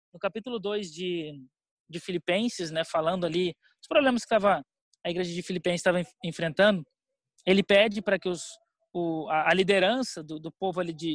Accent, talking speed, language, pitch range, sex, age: Brazilian, 180 wpm, Portuguese, 185-250 Hz, male, 20-39